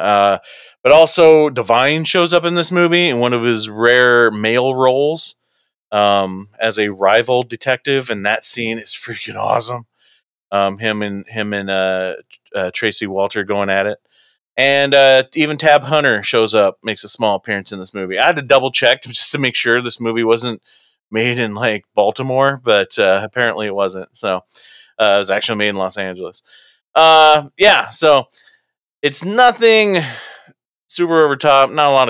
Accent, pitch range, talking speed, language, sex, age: American, 100-125 Hz, 175 wpm, English, male, 30-49